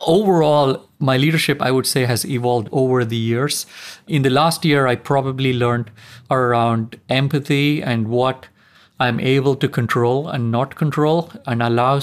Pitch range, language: 120-145 Hz, German